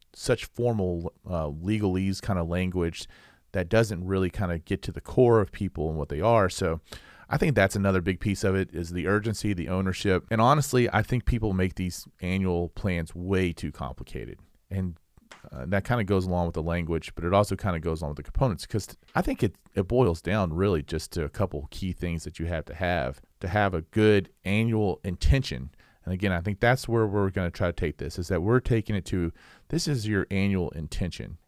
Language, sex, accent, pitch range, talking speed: English, male, American, 85-105 Hz, 225 wpm